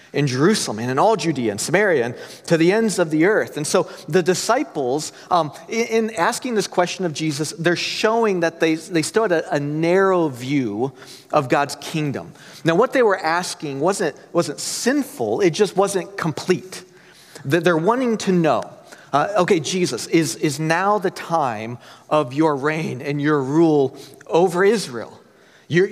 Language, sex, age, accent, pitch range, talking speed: English, male, 40-59, American, 155-195 Hz, 170 wpm